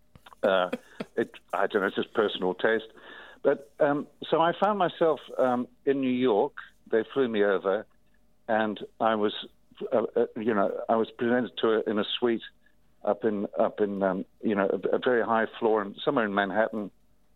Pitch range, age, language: 110-160 Hz, 60-79, English